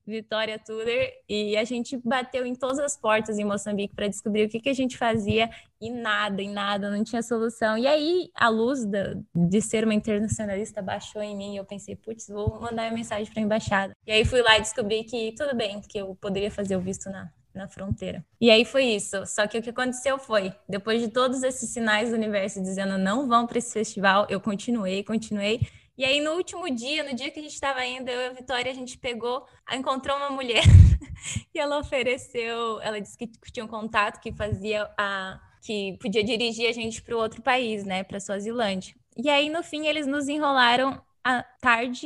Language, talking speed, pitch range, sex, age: Portuguese, 215 wpm, 205-250 Hz, female, 10-29